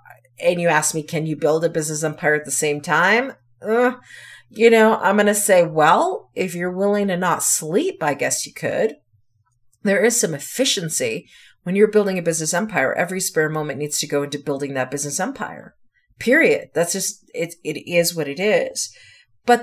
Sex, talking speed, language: female, 195 wpm, English